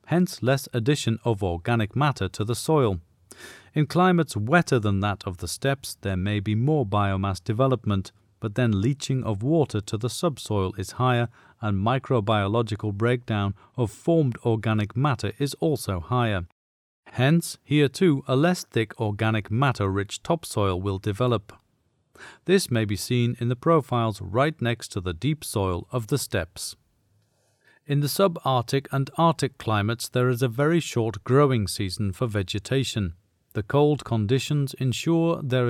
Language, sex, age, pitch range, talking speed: English, male, 40-59, 105-135 Hz, 150 wpm